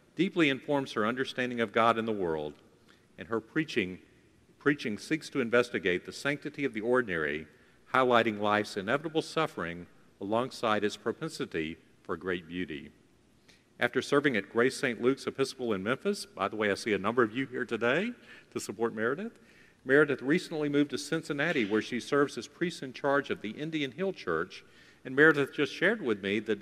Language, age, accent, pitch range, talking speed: English, 50-69, American, 100-140 Hz, 175 wpm